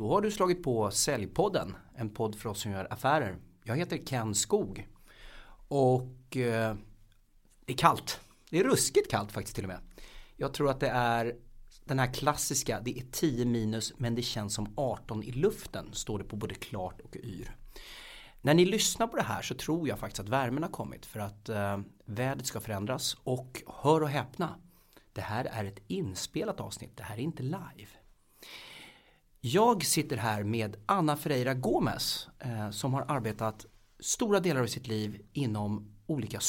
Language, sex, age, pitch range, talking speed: Swedish, male, 30-49, 105-145 Hz, 175 wpm